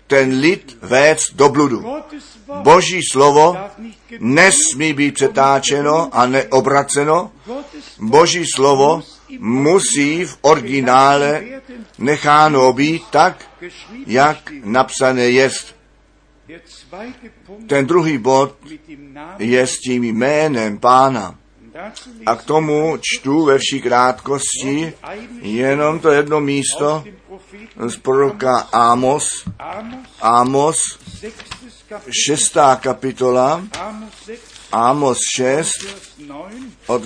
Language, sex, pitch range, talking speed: Czech, male, 135-205 Hz, 85 wpm